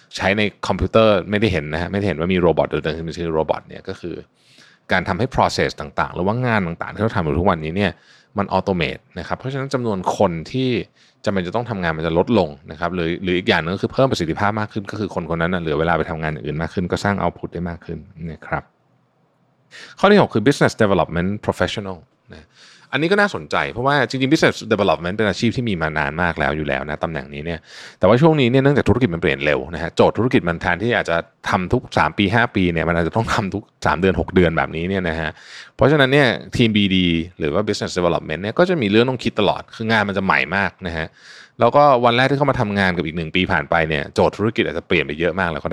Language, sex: Thai, male